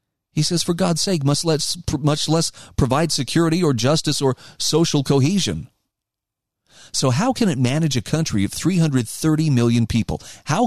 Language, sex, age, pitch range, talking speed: English, male, 40-59, 120-160 Hz, 155 wpm